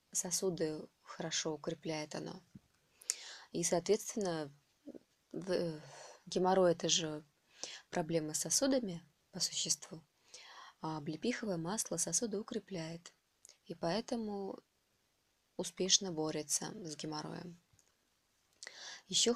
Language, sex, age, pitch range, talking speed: Russian, female, 20-39, 165-205 Hz, 80 wpm